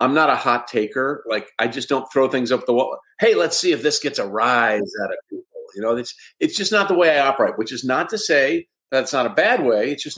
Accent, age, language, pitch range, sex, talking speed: American, 50-69, English, 110-150 Hz, male, 275 wpm